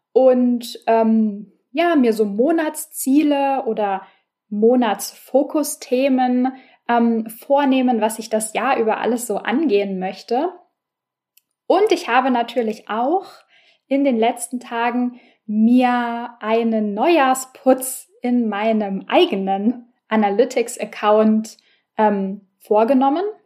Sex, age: female, 10-29